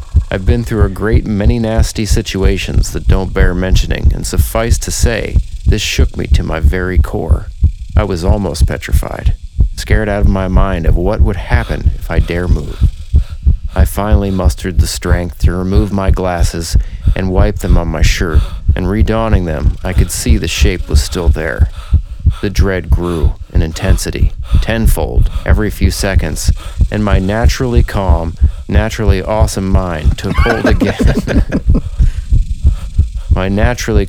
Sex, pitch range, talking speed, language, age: male, 80-95 Hz, 150 wpm, English, 40-59